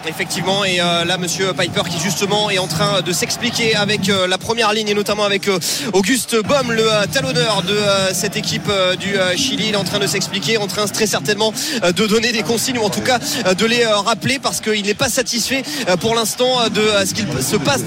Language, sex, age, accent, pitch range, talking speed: French, male, 20-39, French, 205-260 Hz, 205 wpm